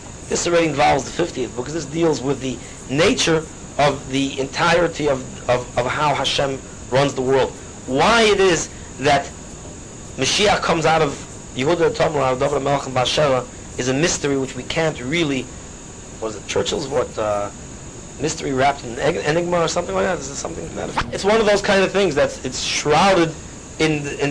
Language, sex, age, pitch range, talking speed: English, male, 30-49, 140-185 Hz, 180 wpm